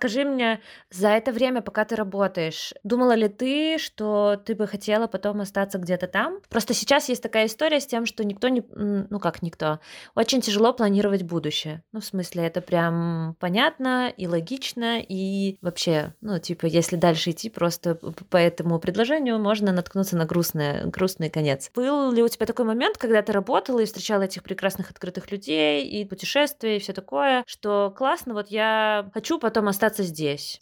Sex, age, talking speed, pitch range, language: female, 20-39, 175 wpm, 170-220 Hz, Russian